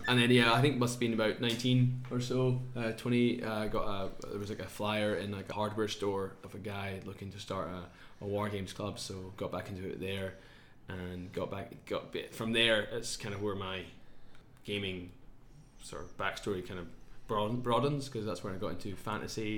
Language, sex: English, male